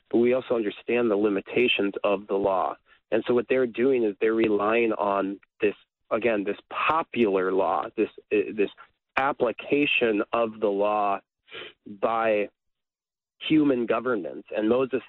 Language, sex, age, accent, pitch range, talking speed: English, male, 30-49, American, 100-130 Hz, 140 wpm